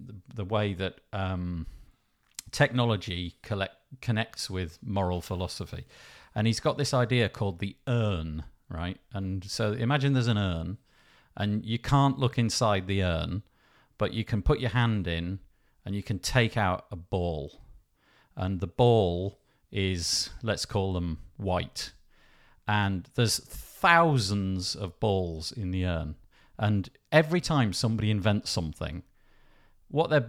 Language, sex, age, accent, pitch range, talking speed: English, male, 50-69, British, 90-120 Hz, 135 wpm